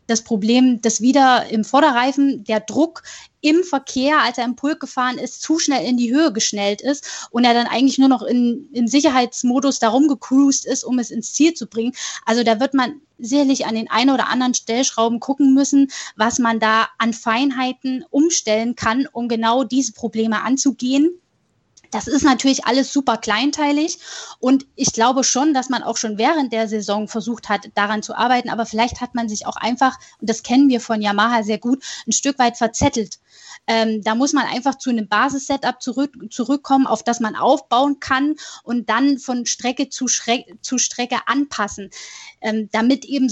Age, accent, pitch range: 10-29, German, 225-275 Hz